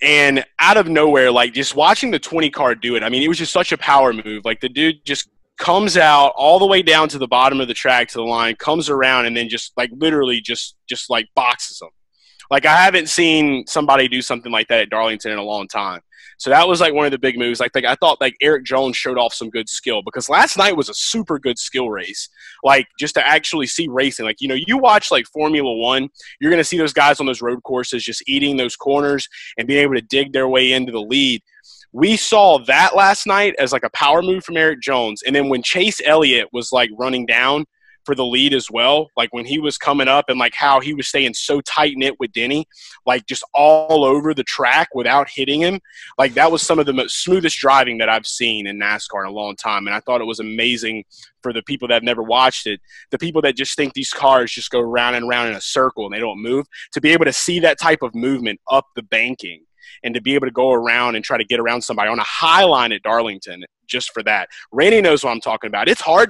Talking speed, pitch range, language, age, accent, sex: 250 wpm, 120-150 Hz, English, 20-39, American, male